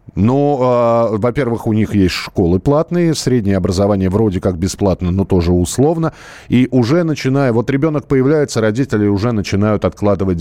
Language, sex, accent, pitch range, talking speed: Russian, male, native, 90-135 Hz, 150 wpm